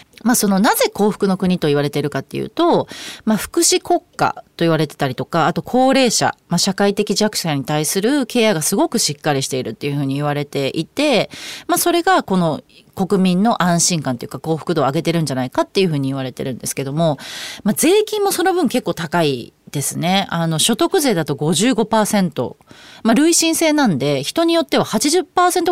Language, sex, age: Japanese, female, 30-49